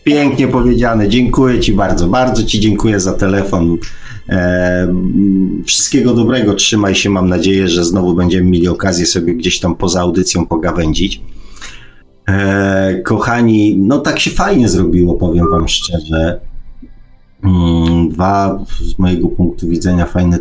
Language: Polish